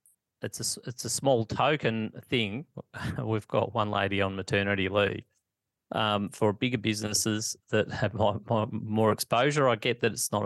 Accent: Australian